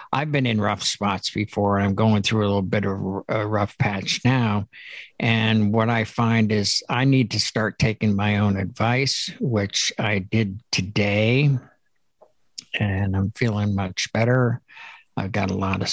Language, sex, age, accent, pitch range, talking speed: English, male, 60-79, American, 100-120 Hz, 165 wpm